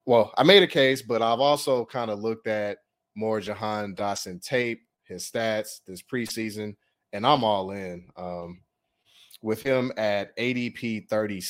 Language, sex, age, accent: English, male, 30-49, American